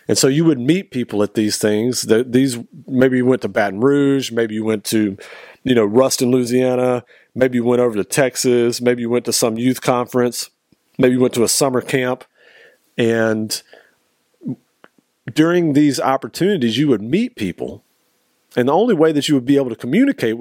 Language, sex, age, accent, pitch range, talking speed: English, male, 40-59, American, 105-130 Hz, 185 wpm